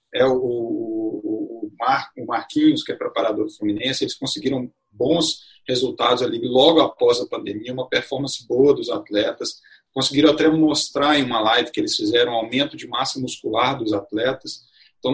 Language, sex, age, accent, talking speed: Portuguese, male, 40-59, Brazilian, 165 wpm